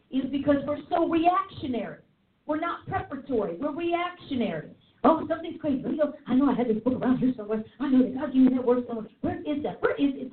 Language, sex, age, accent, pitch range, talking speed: English, female, 50-69, American, 225-325 Hz, 215 wpm